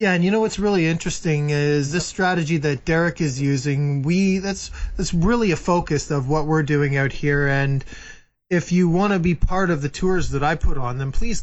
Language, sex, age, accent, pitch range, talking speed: English, male, 20-39, American, 140-165 Hz, 220 wpm